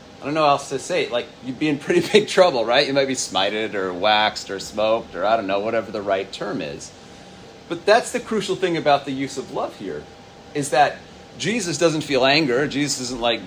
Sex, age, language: male, 30-49, English